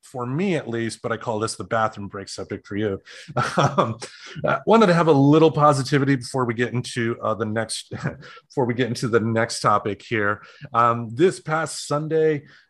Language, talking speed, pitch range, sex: English, 190 wpm, 110-135 Hz, male